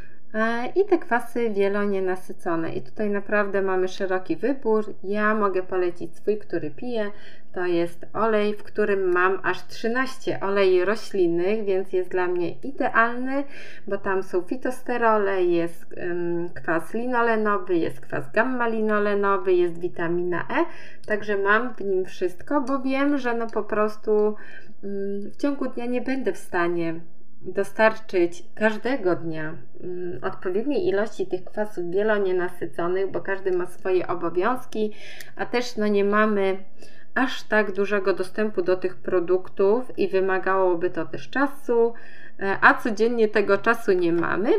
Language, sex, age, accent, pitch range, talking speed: Polish, female, 20-39, native, 185-225 Hz, 130 wpm